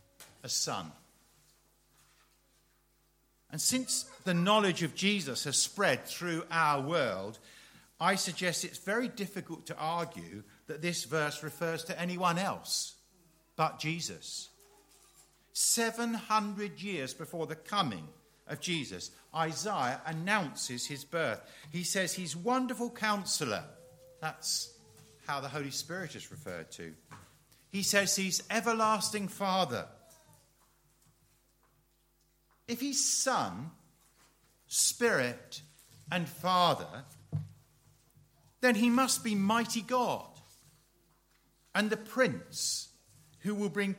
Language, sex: English, male